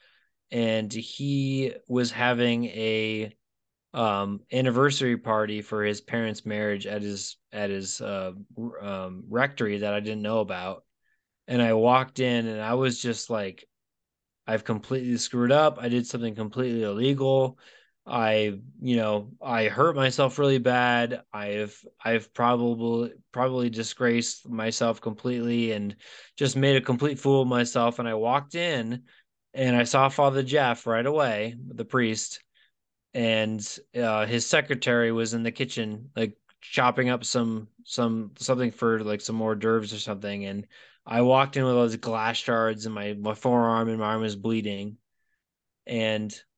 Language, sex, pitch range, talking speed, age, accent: English, male, 110-125 Hz, 150 wpm, 20-39, American